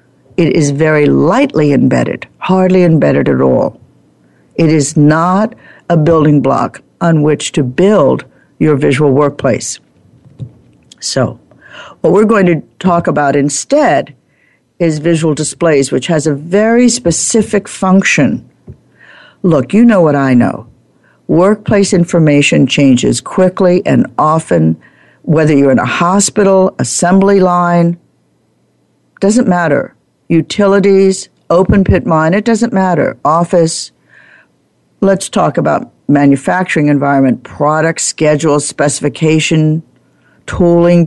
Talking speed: 110 wpm